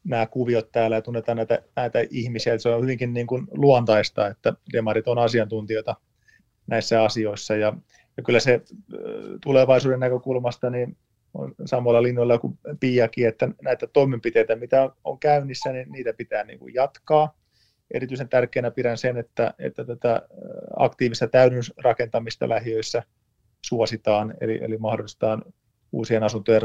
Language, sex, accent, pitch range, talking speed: Finnish, male, native, 110-125 Hz, 135 wpm